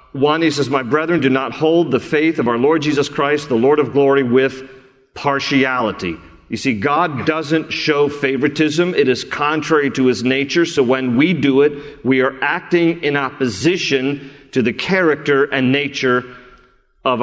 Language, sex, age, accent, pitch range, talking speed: English, male, 40-59, American, 140-175 Hz, 170 wpm